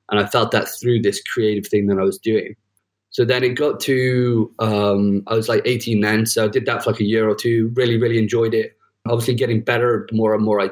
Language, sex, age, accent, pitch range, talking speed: English, male, 20-39, British, 105-125 Hz, 250 wpm